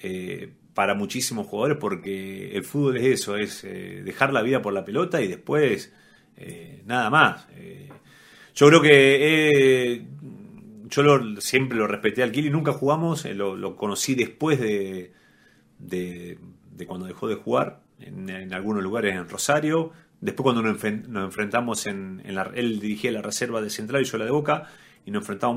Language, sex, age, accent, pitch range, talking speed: Spanish, male, 30-49, Argentinian, 105-145 Hz, 180 wpm